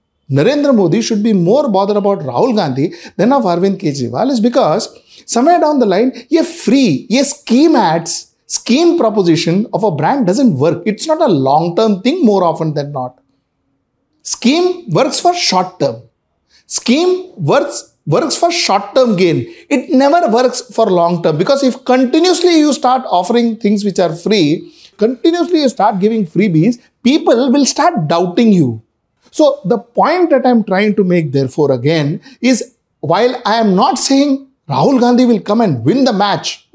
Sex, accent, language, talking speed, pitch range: male, Indian, English, 170 wpm, 155-260 Hz